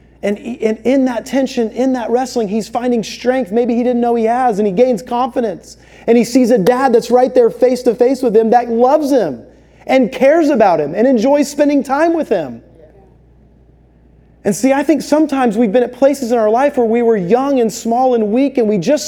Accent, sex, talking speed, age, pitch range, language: American, male, 215 wpm, 30-49, 220-270 Hz, English